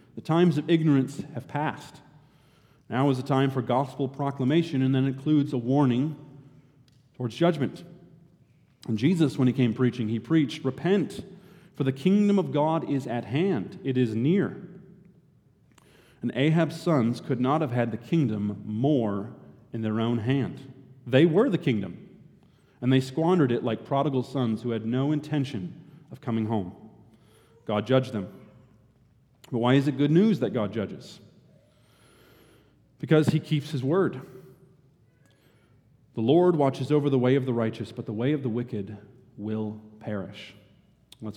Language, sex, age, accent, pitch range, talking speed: English, male, 40-59, American, 115-145 Hz, 155 wpm